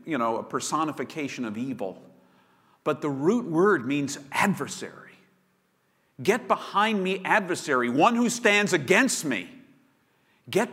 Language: English